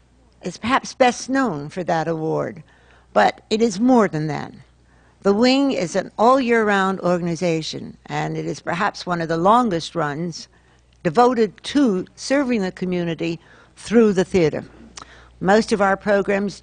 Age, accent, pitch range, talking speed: 60-79, American, 160-205 Hz, 145 wpm